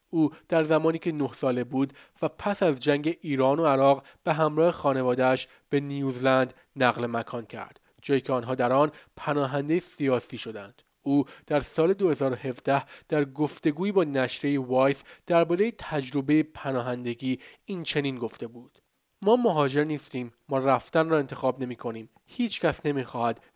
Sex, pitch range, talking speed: male, 130-155 Hz, 145 wpm